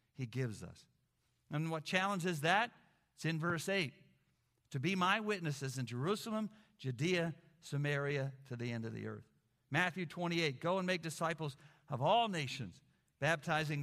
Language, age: English, 50-69